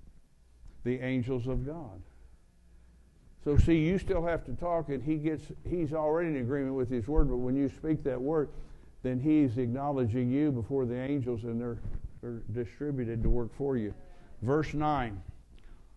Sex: male